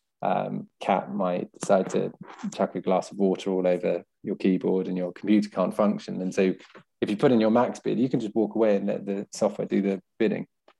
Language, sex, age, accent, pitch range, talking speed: English, male, 20-39, British, 100-120 Hz, 220 wpm